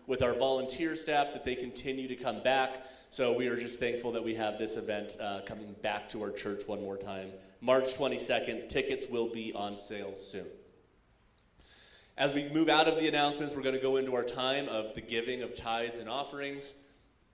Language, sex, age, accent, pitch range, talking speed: English, male, 30-49, American, 110-130 Hz, 195 wpm